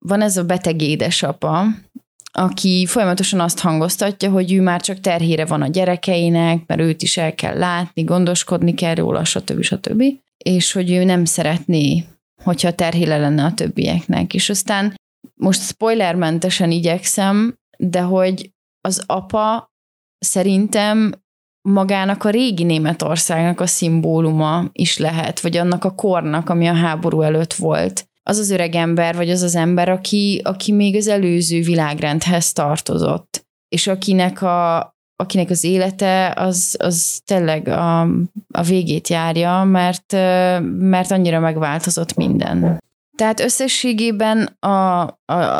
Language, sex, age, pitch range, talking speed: Hungarian, female, 30-49, 165-195 Hz, 135 wpm